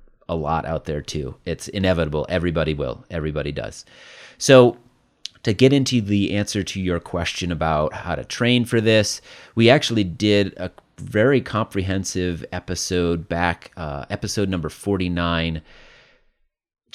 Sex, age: male, 30-49